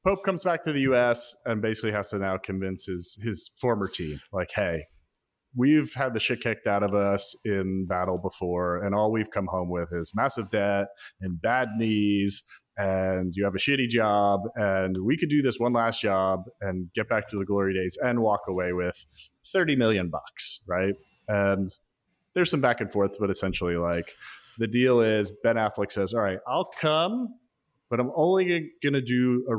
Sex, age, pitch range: male, 30-49, 100-135 Hz